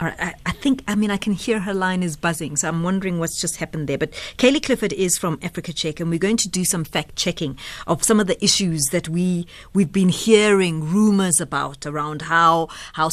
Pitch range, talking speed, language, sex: 155-195 Hz, 220 wpm, English, female